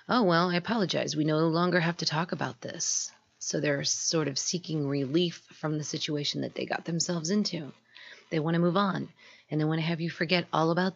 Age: 30-49